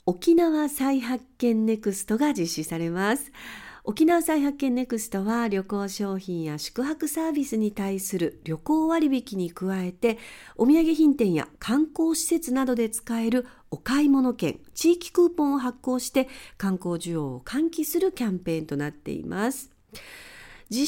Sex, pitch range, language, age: female, 180-285 Hz, Japanese, 50-69